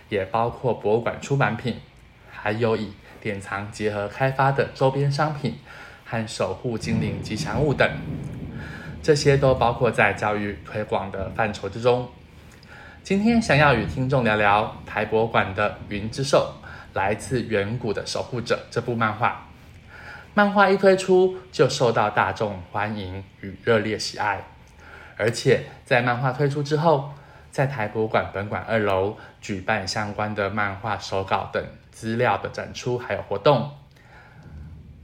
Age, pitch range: 20-39, 100-130 Hz